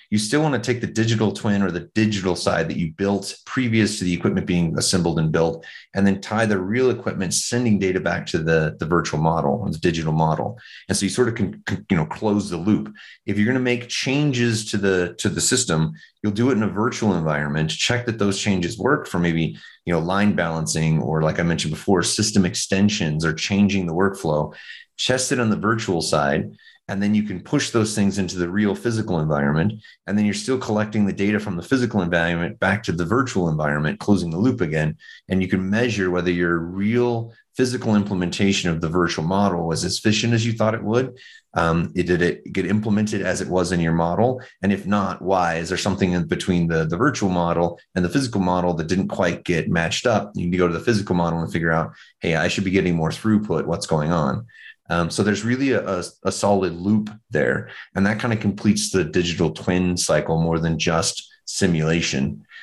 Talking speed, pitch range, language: 220 wpm, 85-110 Hz, English